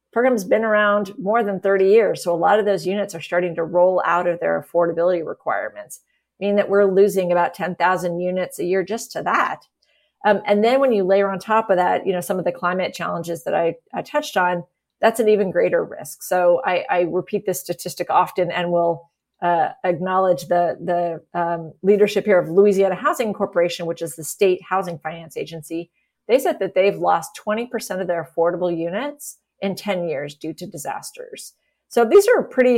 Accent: American